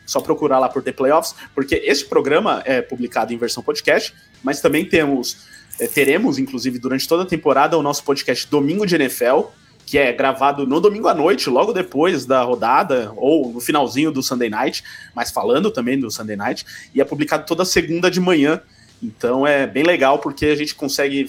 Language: Portuguese